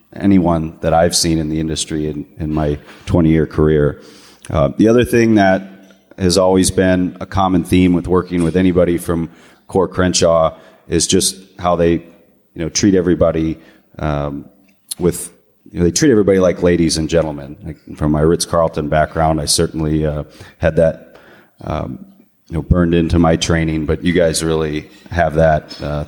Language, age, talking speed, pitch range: English, 30-49, 170 wpm, 80-95 Hz